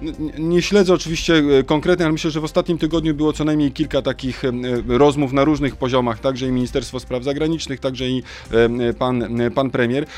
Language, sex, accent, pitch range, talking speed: Polish, male, native, 130-160 Hz, 170 wpm